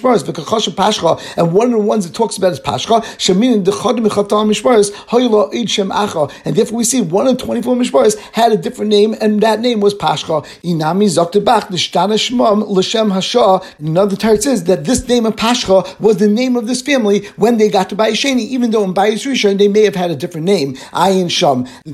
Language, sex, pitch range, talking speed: English, male, 190-225 Hz, 165 wpm